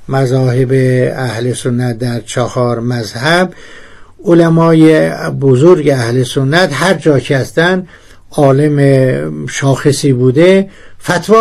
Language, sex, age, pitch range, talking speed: Persian, male, 60-79, 125-155 Hz, 95 wpm